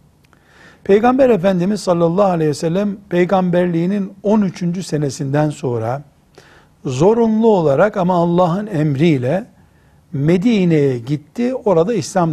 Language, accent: Turkish, native